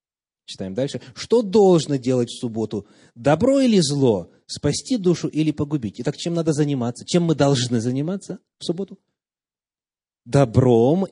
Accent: native